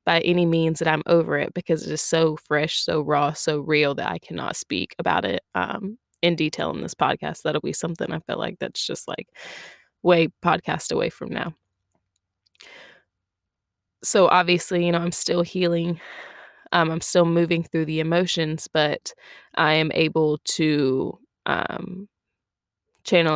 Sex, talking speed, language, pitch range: female, 160 wpm, English, 150-170 Hz